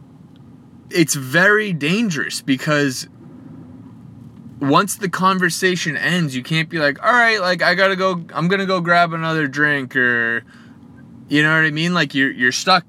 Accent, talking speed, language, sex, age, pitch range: American, 155 wpm, English, male, 20-39, 125-175 Hz